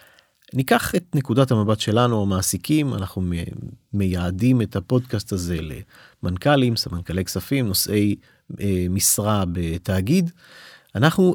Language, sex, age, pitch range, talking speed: Hebrew, male, 40-59, 100-145 Hz, 95 wpm